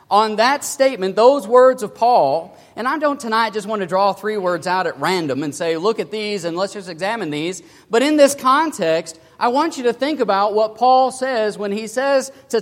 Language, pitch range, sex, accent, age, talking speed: English, 175-245 Hz, male, American, 40-59, 225 wpm